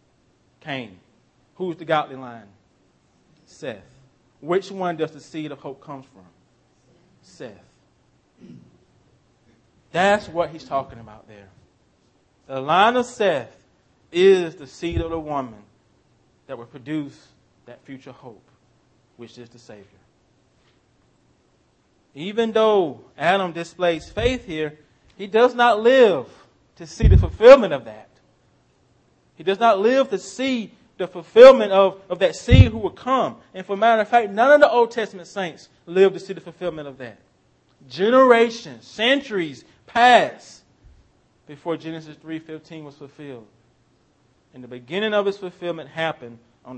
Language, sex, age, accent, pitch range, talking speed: English, male, 30-49, American, 125-190 Hz, 140 wpm